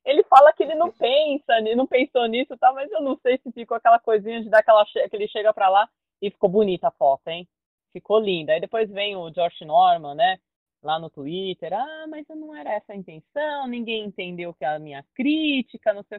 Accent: Brazilian